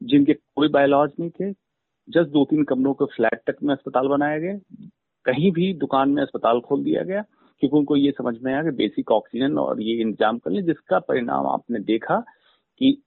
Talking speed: 200 wpm